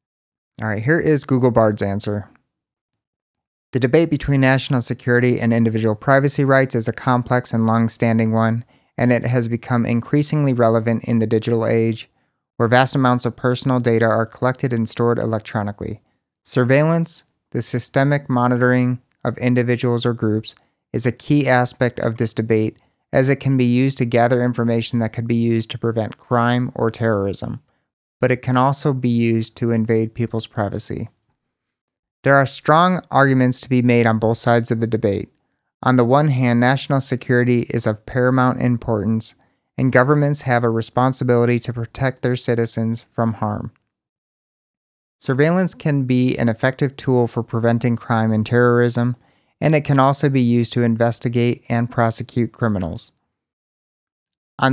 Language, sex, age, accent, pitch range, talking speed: English, male, 30-49, American, 115-130 Hz, 155 wpm